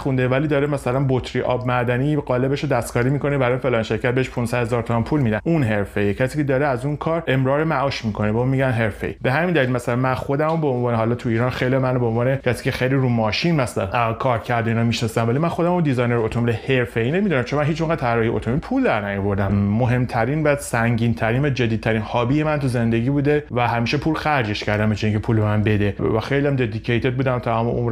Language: Persian